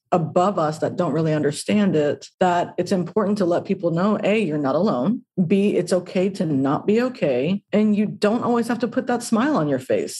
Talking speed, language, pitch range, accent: 220 wpm, English, 165-210 Hz, American